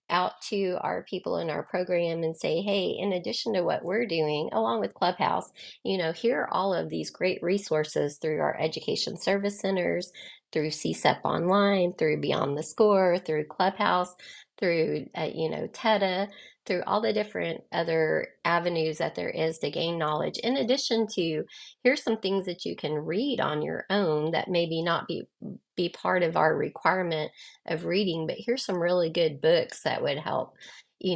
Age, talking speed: 30-49, 180 wpm